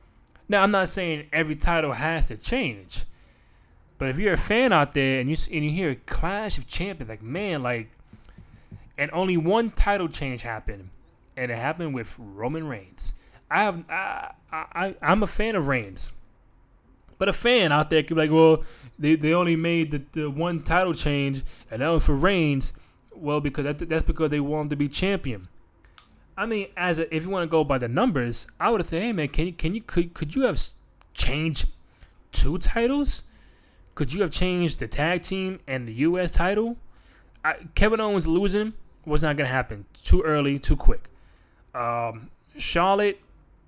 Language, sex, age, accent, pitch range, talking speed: English, male, 20-39, American, 130-180 Hz, 190 wpm